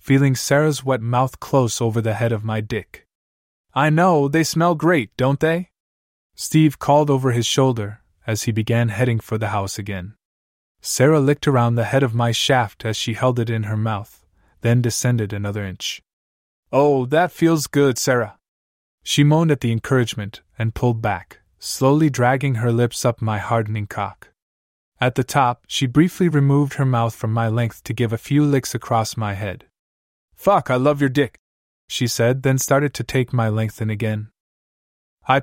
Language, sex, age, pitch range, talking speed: English, male, 20-39, 110-140 Hz, 180 wpm